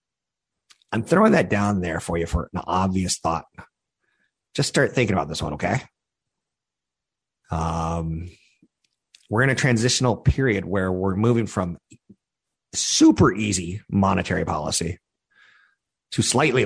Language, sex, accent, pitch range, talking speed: English, male, American, 95-115 Hz, 125 wpm